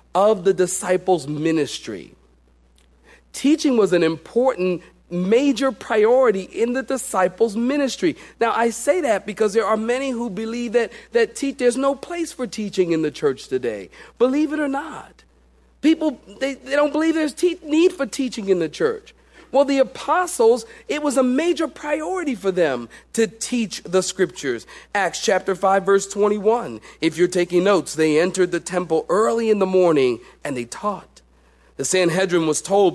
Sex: male